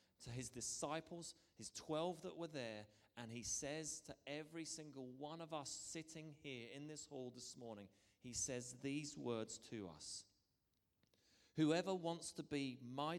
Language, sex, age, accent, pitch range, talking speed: English, male, 30-49, British, 100-145 Hz, 160 wpm